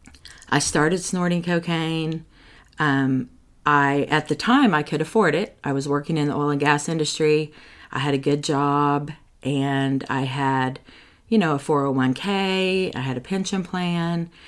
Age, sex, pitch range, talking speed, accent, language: 40-59, female, 140-165 Hz, 175 wpm, American, English